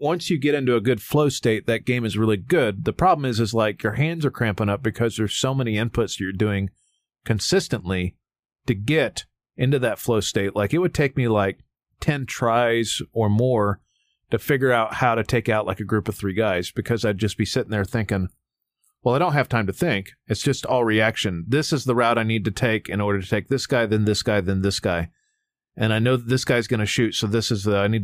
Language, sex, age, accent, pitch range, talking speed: English, male, 40-59, American, 105-130 Hz, 240 wpm